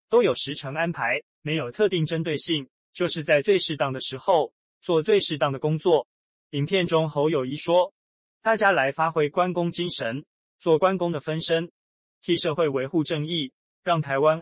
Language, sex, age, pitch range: Chinese, male, 20-39, 140-175 Hz